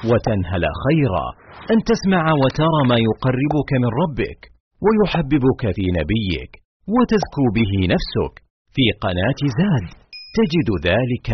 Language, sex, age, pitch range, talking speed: Arabic, male, 40-59, 110-155 Hz, 105 wpm